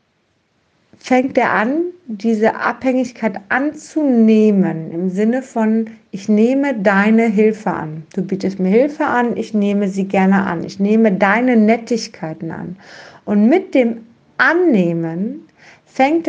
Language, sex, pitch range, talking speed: German, female, 200-260 Hz, 125 wpm